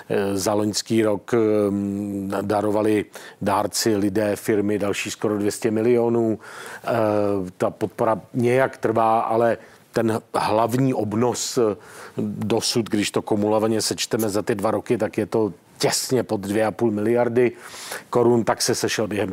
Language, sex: Czech, male